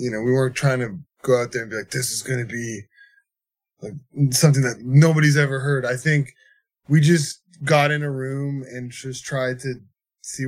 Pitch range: 125-150 Hz